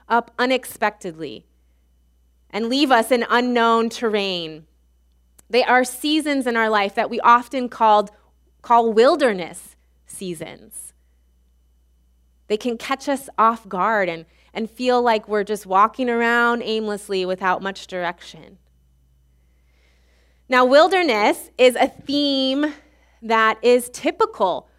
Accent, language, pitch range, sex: American, English, 160-250 Hz, female